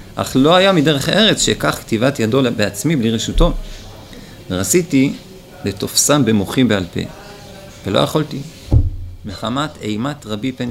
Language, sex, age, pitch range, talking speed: Hebrew, male, 40-59, 105-140 Hz, 125 wpm